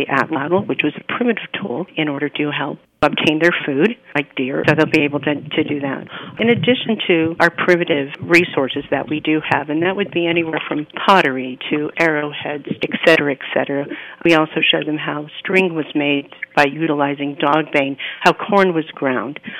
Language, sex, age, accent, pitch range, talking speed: English, female, 50-69, American, 150-175 Hz, 190 wpm